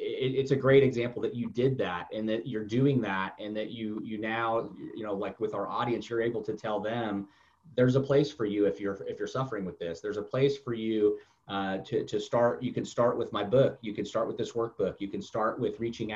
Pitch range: 105-130 Hz